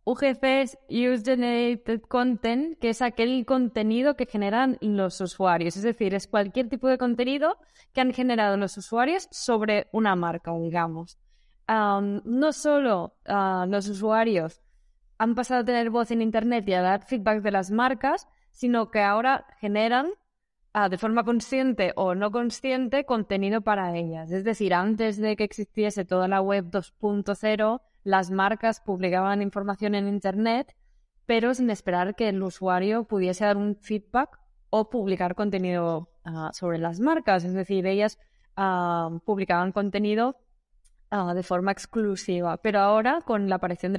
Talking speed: 150 wpm